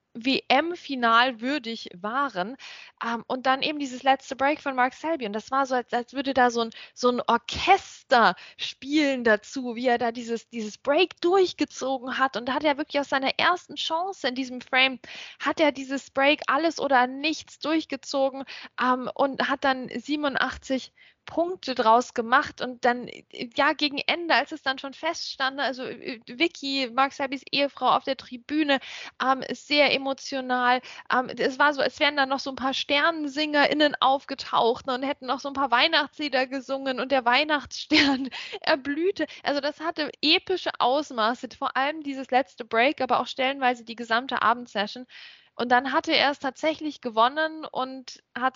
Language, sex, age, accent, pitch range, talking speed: German, female, 20-39, German, 245-290 Hz, 170 wpm